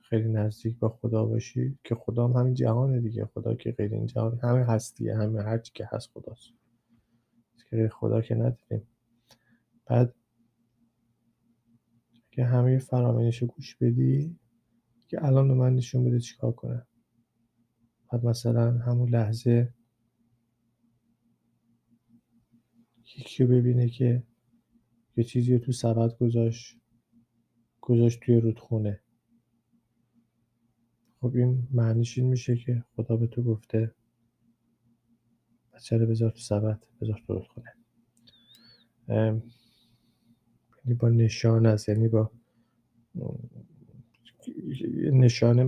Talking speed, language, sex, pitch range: 105 wpm, Persian, male, 115-120 Hz